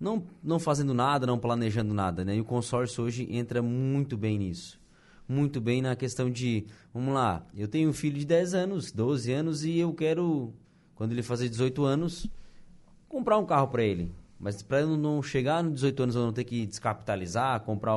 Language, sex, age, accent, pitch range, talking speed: Portuguese, male, 20-39, Brazilian, 115-150 Hz, 195 wpm